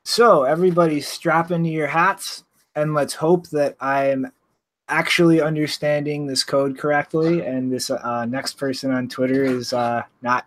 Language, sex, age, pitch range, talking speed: English, male, 20-39, 125-165 Hz, 155 wpm